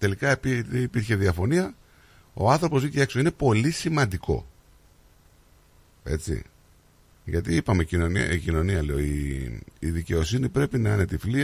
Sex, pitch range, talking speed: male, 80-130 Hz, 135 wpm